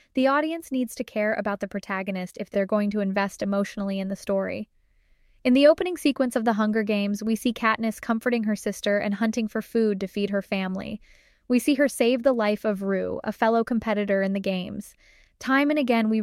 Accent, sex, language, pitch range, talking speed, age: American, female, English, 200-240 Hz, 210 wpm, 10-29